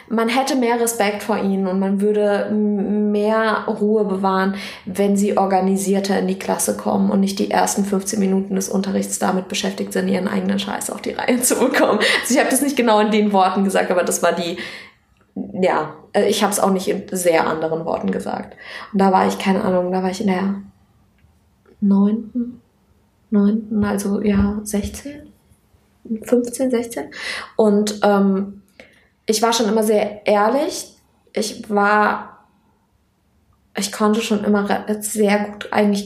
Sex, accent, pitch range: female, German, 195-220 Hz